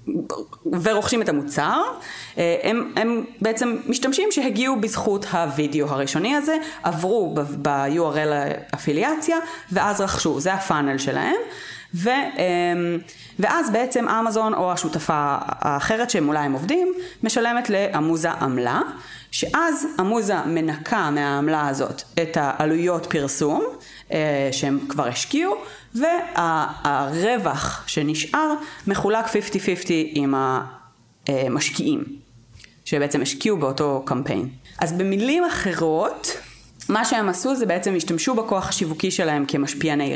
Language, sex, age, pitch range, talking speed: Hebrew, female, 30-49, 150-240 Hz, 105 wpm